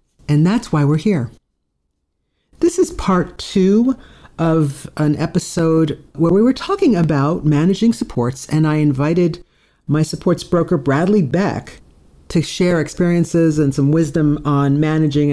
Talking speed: 135 wpm